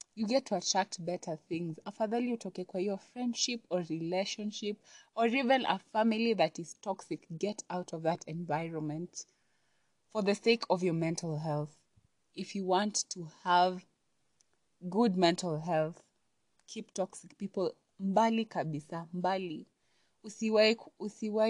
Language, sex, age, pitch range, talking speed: English, female, 20-39, 160-205 Hz, 130 wpm